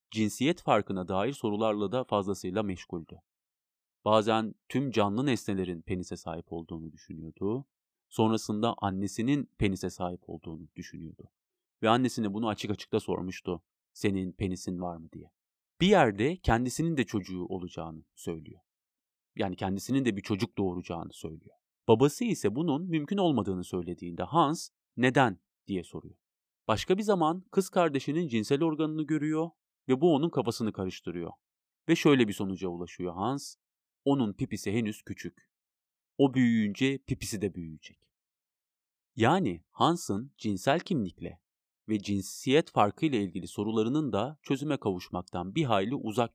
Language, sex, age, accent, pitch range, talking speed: Turkish, male, 30-49, native, 90-130 Hz, 130 wpm